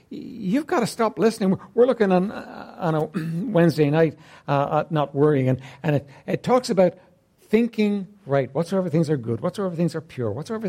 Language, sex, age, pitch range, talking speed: English, male, 60-79, 140-225 Hz, 180 wpm